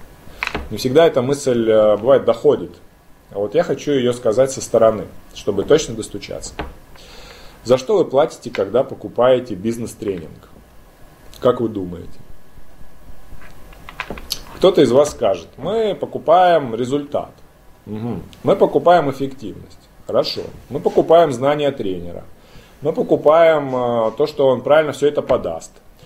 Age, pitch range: 20-39, 115-165 Hz